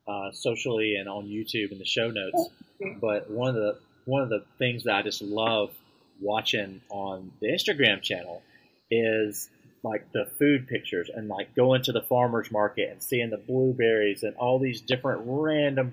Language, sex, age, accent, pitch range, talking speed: English, male, 30-49, American, 105-125 Hz, 175 wpm